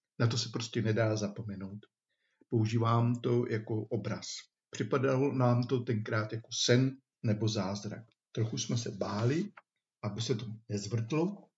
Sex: male